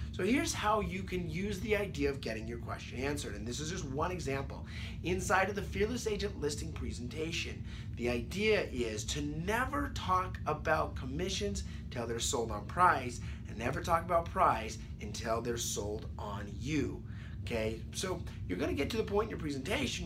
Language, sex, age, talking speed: English, male, 30-49, 185 wpm